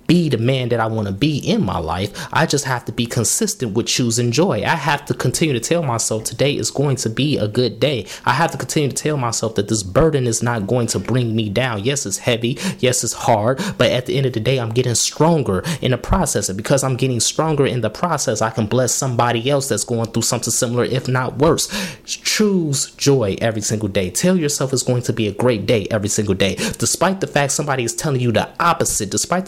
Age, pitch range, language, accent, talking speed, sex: 20-39, 110-145 Hz, English, American, 240 wpm, male